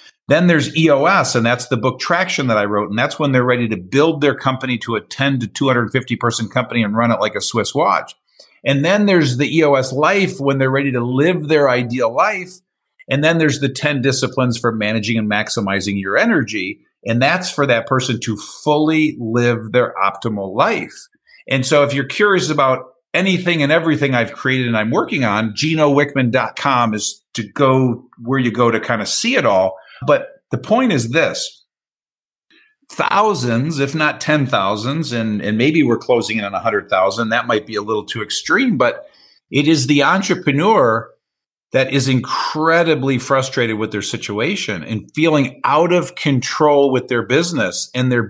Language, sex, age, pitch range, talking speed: English, male, 50-69, 120-150 Hz, 180 wpm